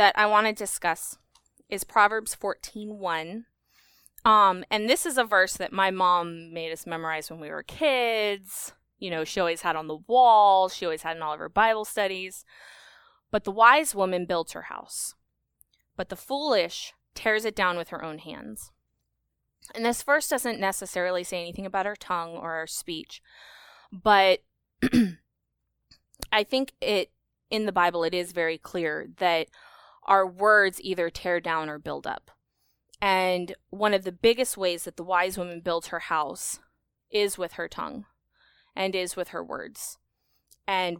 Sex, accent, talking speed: female, American, 170 wpm